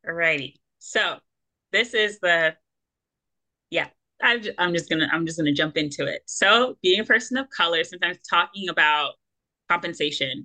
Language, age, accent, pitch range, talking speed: English, 20-39, American, 150-175 Hz, 160 wpm